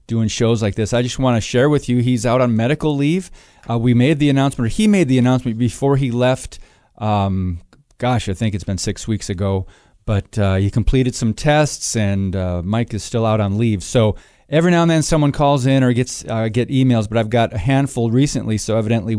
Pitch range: 110-145 Hz